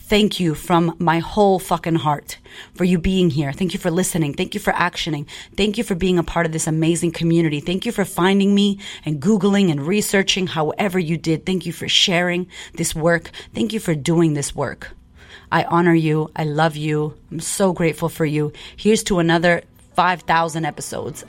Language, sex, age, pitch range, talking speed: English, female, 30-49, 160-185 Hz, 195 wpm